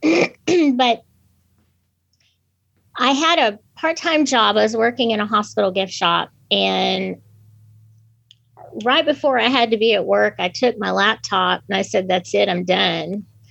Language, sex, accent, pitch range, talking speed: English, female, American, 185-255 Hz, 150 wpm